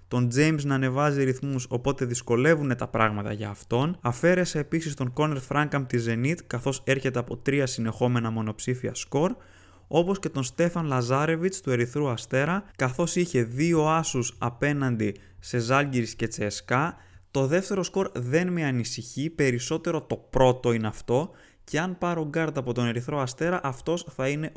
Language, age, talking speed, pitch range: Greek, 20-39, 155 wpm, 120-150 Hz